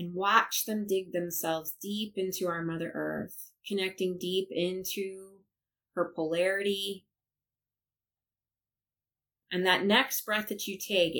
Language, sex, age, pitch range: English, female, 20-39, 130-185 Hz